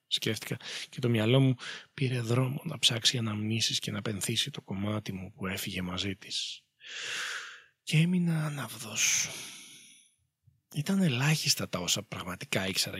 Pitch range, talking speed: 105-130 Hz, 135 wpm